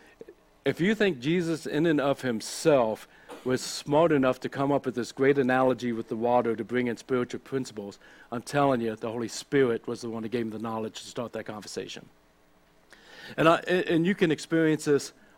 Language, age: English, 60-79